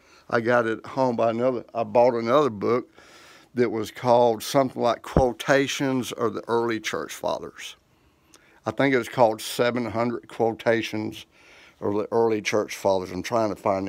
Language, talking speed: English, 165 wpm